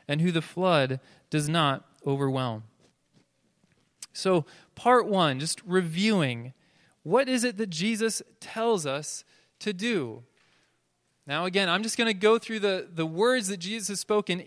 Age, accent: 20-39, American